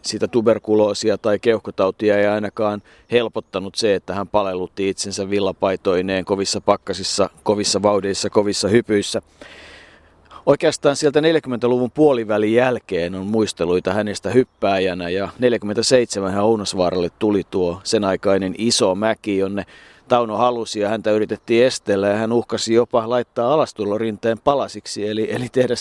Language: Finnish